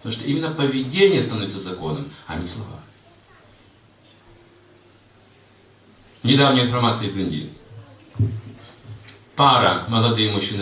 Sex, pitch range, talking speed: male, 105-130 Hz, 90 wpm